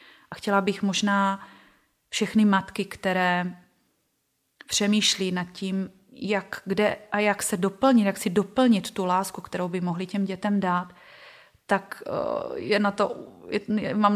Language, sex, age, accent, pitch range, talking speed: Czech, female, 30-49, native, 190-215 Hz, 125 wpm